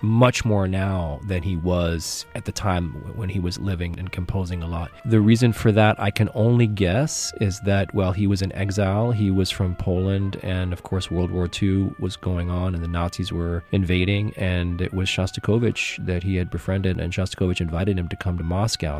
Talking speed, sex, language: 210 wpm, male, English